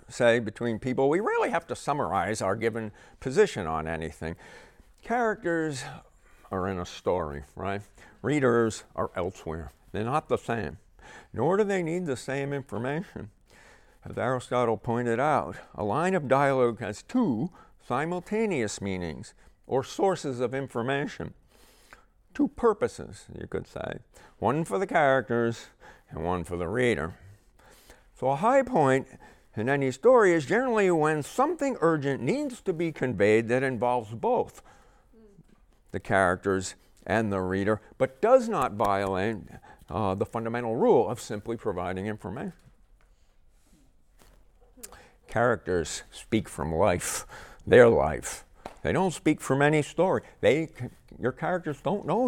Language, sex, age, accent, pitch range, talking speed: English, male, 50-69, American, 105-165 Hz, 135 wpm